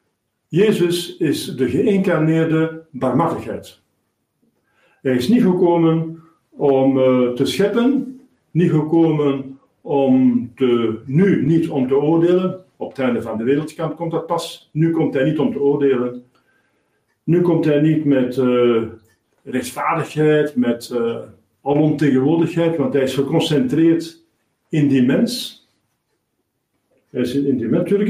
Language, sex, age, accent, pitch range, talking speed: Dutch, male, 50-69, Dutch, 135-180 Hz, 130 wpm